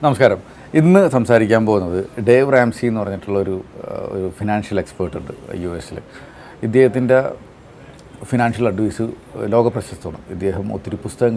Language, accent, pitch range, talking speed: Malayalam, native, 100-125 Hz, 110 wpm